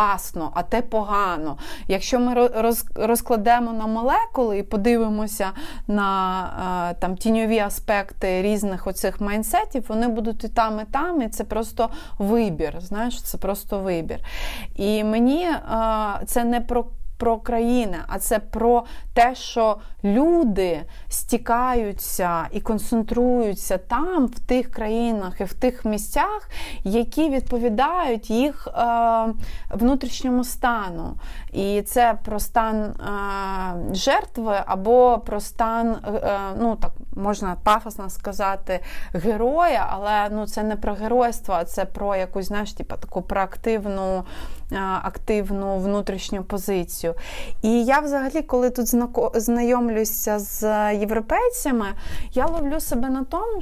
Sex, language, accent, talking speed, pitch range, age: female, Ukrainian, native, 115 wpm, 205-245 Hz, 30-49